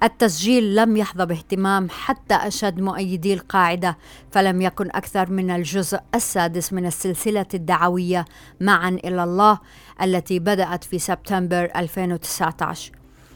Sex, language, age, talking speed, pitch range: female, Arabic, 30-49, 110 wpm, 180-200 Hz